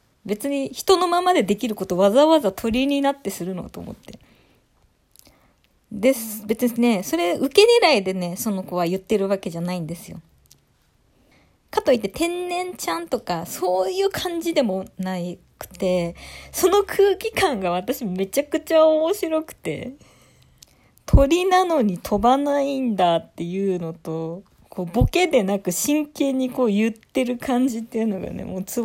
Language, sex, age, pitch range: Japanese, female, 20-39, 180-250 Hz